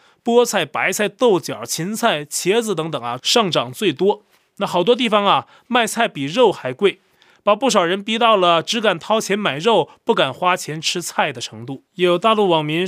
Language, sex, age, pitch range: Chinese, male, 20-39, 165-215 Hz